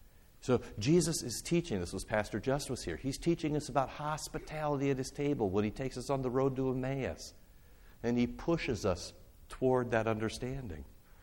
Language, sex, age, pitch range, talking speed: English, male, 60-79, 90-130 Hz, 180 wpm